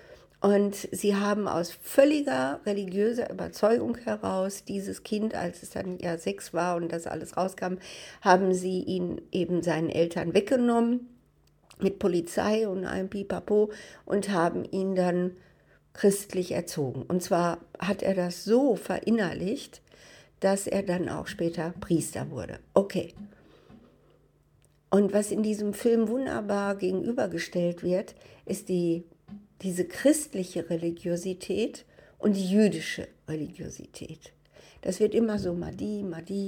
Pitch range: 180-230 Hz